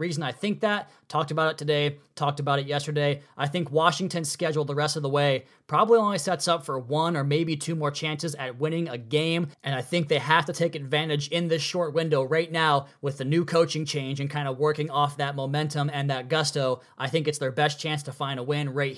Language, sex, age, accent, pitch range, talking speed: English, male, 20-39, American, 145-180 Hz, 240 wpm